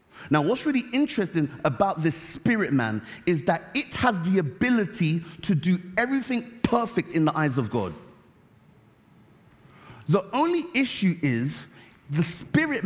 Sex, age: male, 30-49